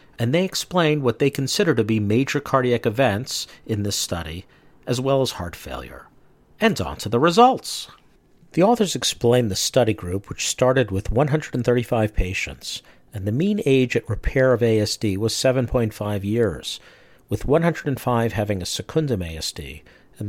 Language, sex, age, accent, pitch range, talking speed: English, male, 50-69, American, 100-135 Hz, 155 wpm